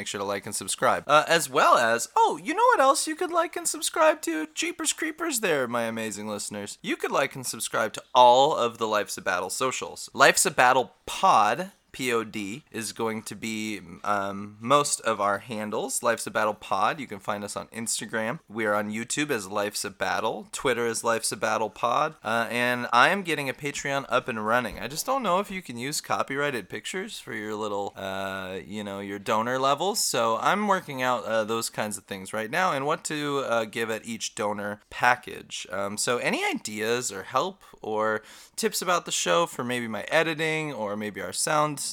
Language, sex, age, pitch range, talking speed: English, male, 30-49, 110-150 Hz, 210 wpm